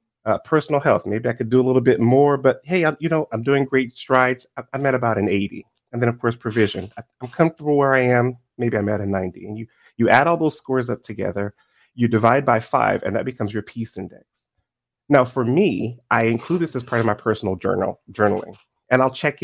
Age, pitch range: 30-49, 105-130 Hz